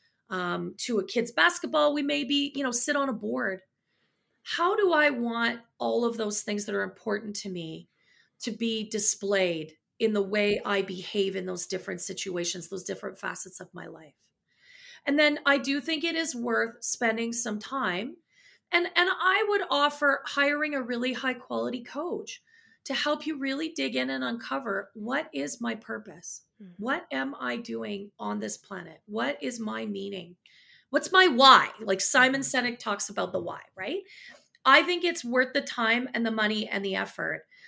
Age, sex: 30-49, female